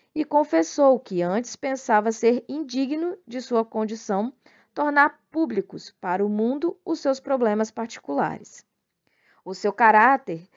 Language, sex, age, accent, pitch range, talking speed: Portuguese, female, 20-39, Brazilian, 210-280 Hz, 125 wpm